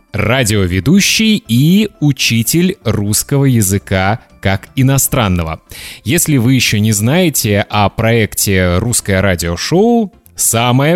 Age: 20-39